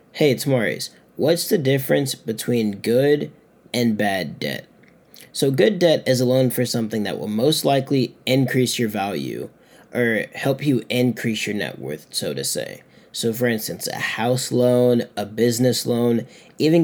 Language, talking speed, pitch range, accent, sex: English, 165 wpm, 115-135 Hz, American, male